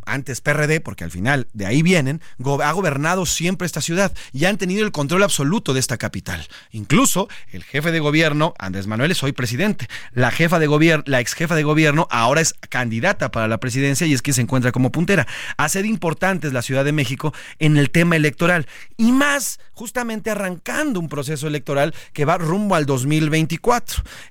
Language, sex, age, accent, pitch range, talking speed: Spanish, male, 30-49, Mexican, 130-180 Hz, 190 wpm